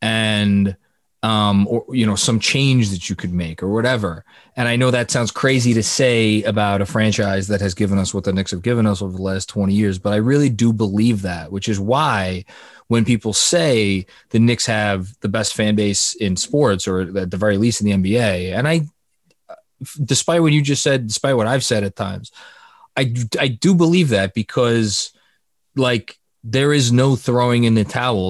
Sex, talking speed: male, 200 wpm